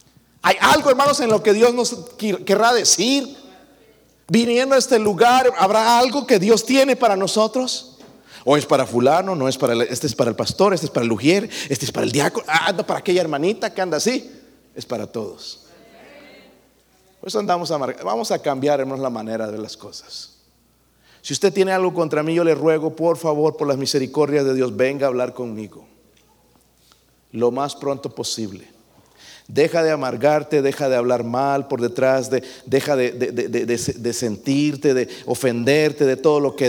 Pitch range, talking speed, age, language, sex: 130-185 Hz, 190 wpm, 50-69, Spanish, male